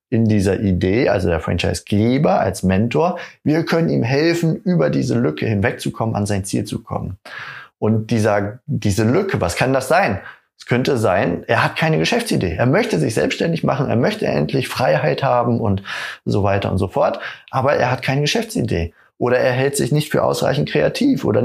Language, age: German, 30-49